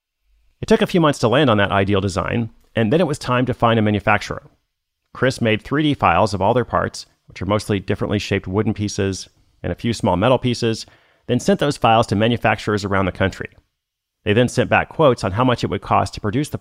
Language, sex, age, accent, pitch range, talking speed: English, male, 40-59, American, 100-130 Hz, 230 wpm